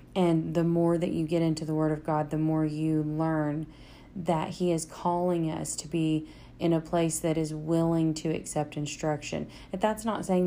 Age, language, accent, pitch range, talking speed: 30-49, English, American, 150-170 Hz, 195 wpm